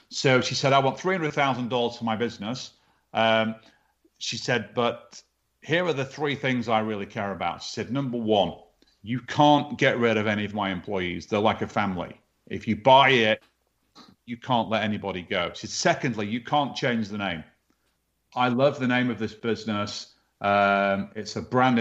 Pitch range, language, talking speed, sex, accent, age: 110-130 Hz, English, 185 wpm, male, British, 40-59